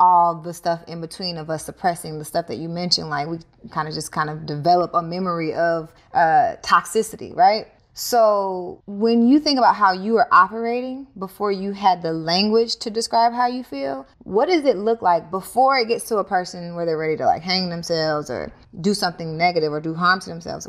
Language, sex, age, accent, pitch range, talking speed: English, female, 20-39, American, 180-245 Hz, 210 wpm